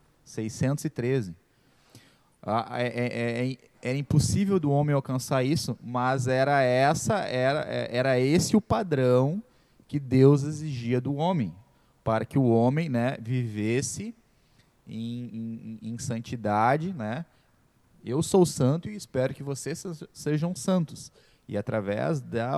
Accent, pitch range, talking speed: Brazilian, 125-160 Hz, 130 wpm